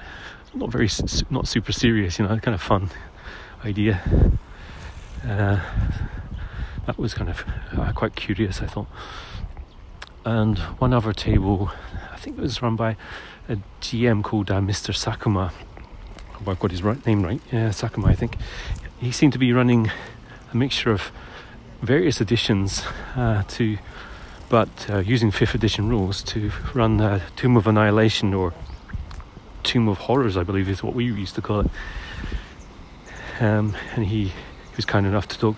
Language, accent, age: English, British, 40-59